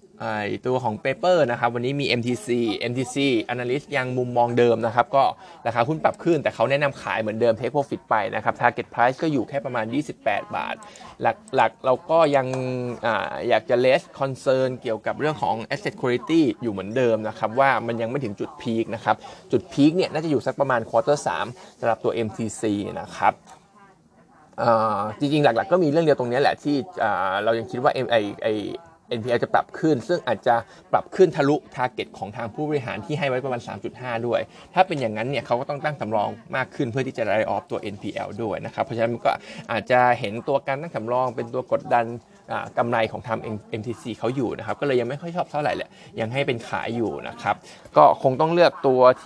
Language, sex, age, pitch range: Thai, male, 20-39, 115-145 Hz